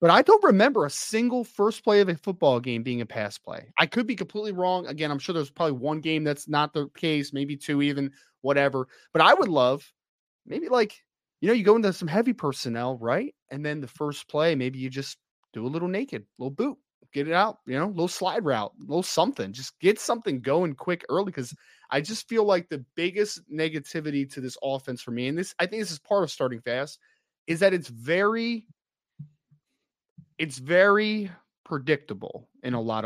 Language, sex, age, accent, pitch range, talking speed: English, male, 20-39, American, 135-190 Hz, 210 wpm